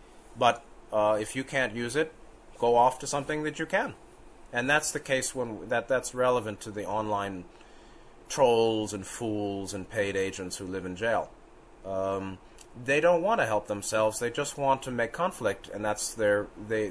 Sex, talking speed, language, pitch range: male, 185 wpm, English, 105-140 Hz